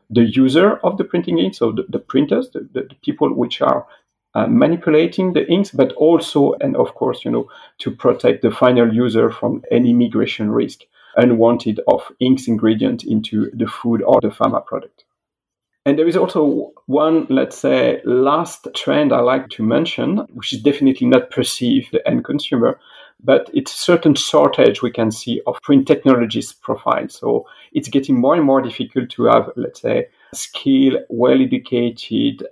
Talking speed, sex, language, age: 170 wpm, male, English, 40-59